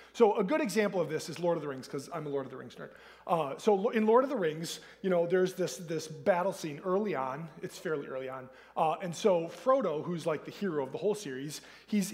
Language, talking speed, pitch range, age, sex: English, 260 wpm, 160-220 Hz, 30-49, male